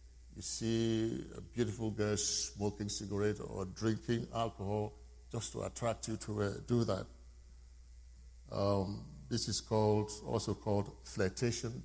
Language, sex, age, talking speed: English, male, 50-69, 125 wpm